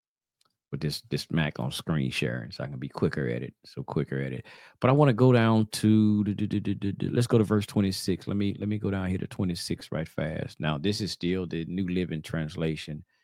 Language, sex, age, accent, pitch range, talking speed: English, male, 40-59, American, 80-110 Hz, 240 wpm